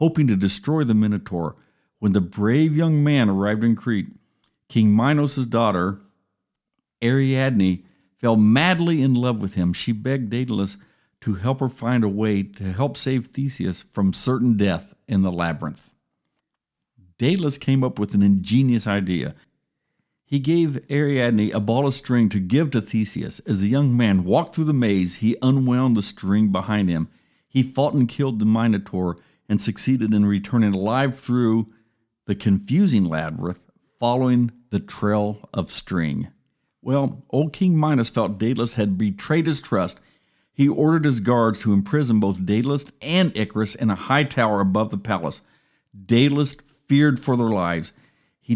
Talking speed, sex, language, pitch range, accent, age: 155 wpm, male, English, 100-135 Hz, American, 50-69